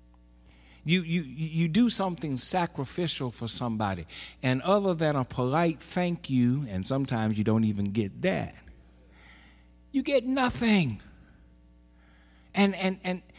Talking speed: 125 wpm